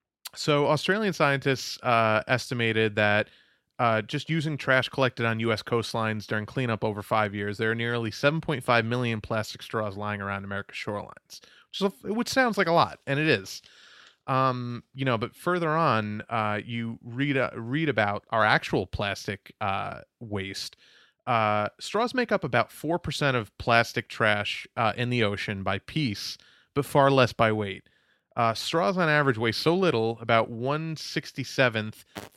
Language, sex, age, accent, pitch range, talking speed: English, male, 30-49, American, 110-145 Hz, 160 wpm